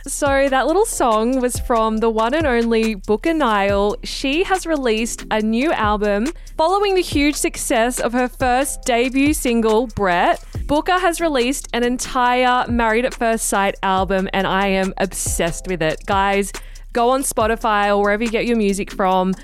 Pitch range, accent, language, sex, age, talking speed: 205-260 Hz, Australian, English, female, 10-29, 170 wpm